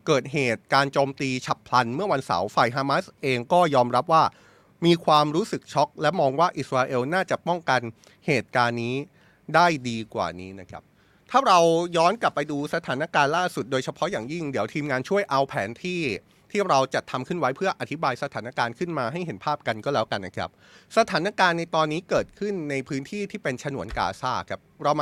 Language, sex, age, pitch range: Thai, male, 30-49, 130-175 Hz